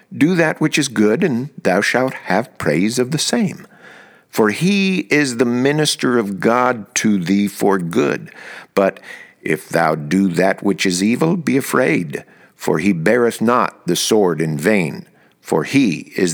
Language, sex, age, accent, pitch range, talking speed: English, male, 50-69, American, 85-125 Hz, 165 wpm